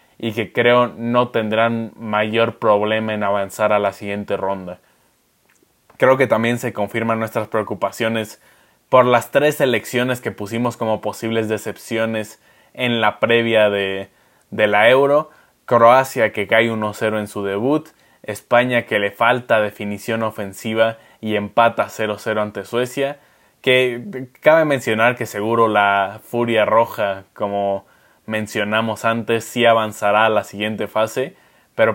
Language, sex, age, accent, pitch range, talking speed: Spanish, male, 20-39, Mexican, 105-120 Hz, 135 wpm